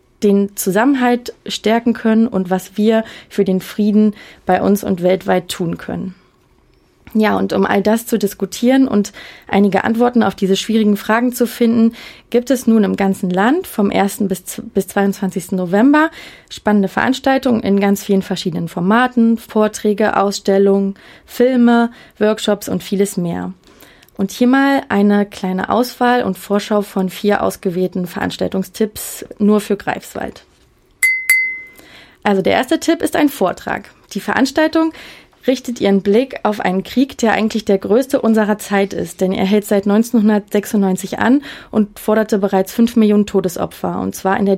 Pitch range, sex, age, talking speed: 195-235 Hz, female, 20-39, 150 wpm